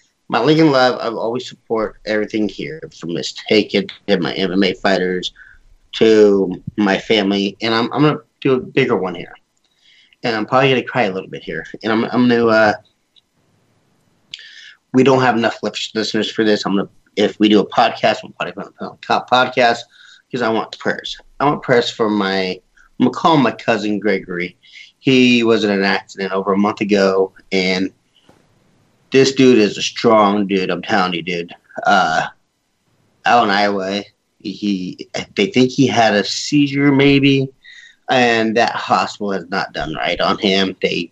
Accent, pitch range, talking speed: American, 100-120 Hz, 180 wpm